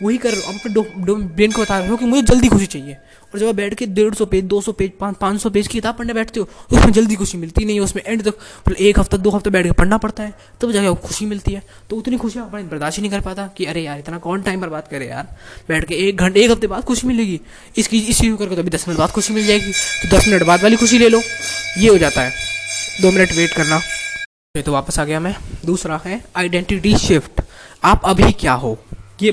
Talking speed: 255 wpm